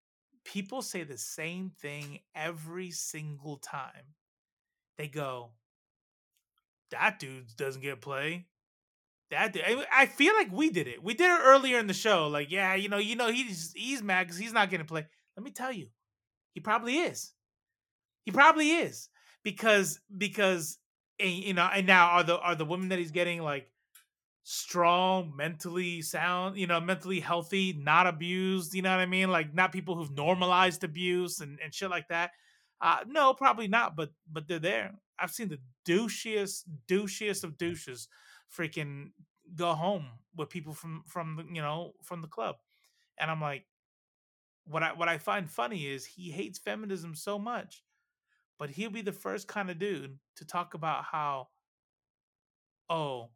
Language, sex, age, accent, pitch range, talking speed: English, male, 20-39, American, 155-200 Hz, 170 wpm